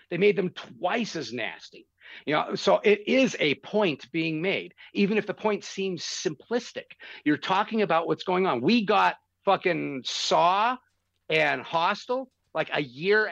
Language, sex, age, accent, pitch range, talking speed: English, male, 50-69, American, 160-210 Hz, 160 wpm